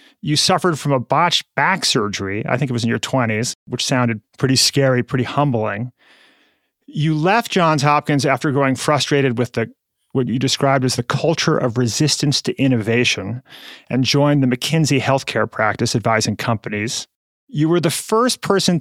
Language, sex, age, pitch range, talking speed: English, male, 30-49, 125-155 Hz, 165 wpm